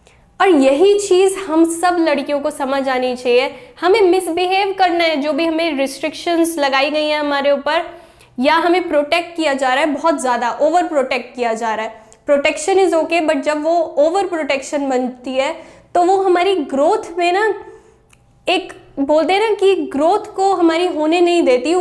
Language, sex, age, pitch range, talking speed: Hindi, female, 10-29, 275-360 Hz, 175 wpm